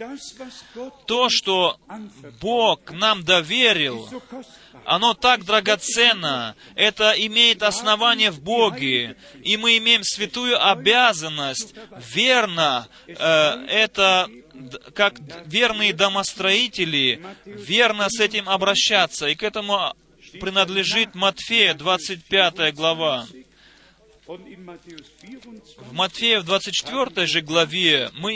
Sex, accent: male, native